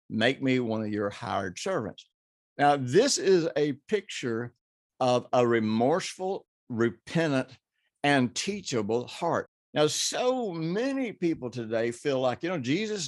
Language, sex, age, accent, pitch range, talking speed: English, male, 60-79, American, 115-155 Hz, 135 wpm